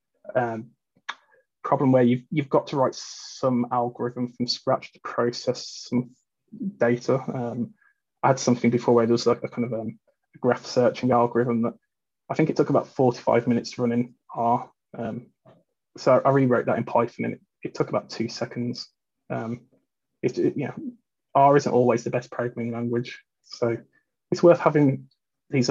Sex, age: male, 20-39